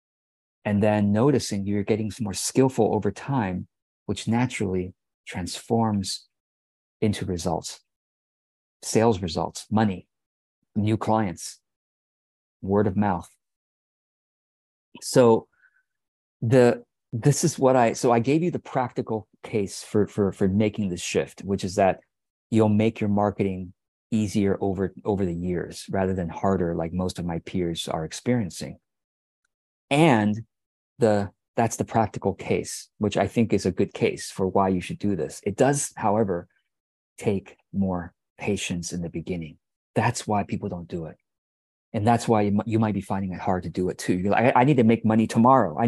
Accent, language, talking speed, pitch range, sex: American, English, 155 wpm, 95-115 Hz, male